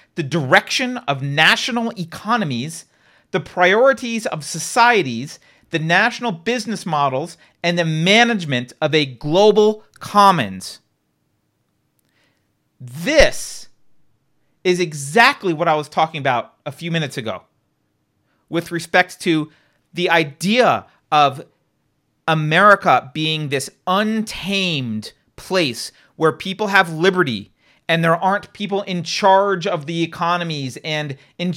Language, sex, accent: English, male, American